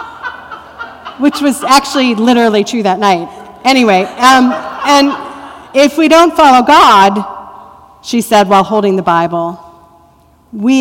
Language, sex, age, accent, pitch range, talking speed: English, female, 40-59, American, 195-250 Hz, 120 wpm